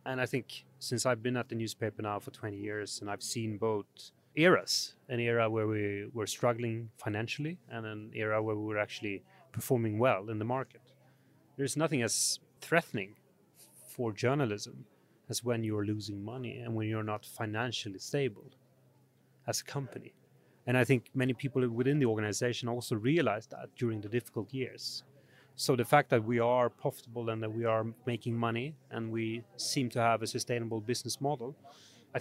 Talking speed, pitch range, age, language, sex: 175 wpm, 110-130 Hz, 30-49, English, male